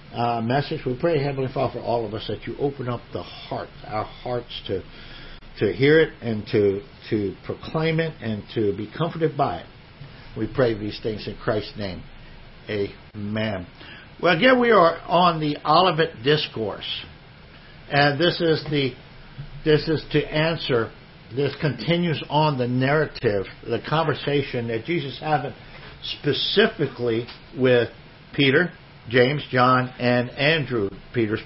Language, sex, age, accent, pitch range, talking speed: English, male, 60-79, American, 120-150 Hz, 145 wpm